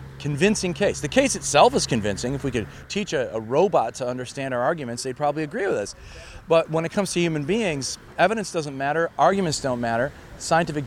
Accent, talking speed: American, 205 wpm